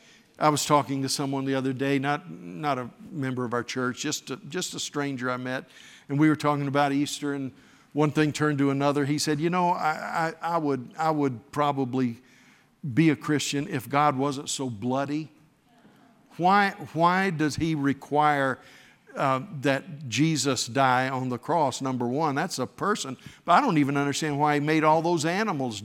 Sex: male